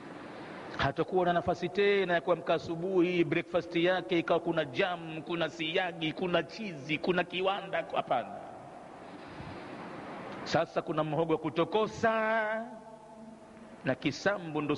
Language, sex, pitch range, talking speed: Swahili, male, 155-210 Hz, 110 wpm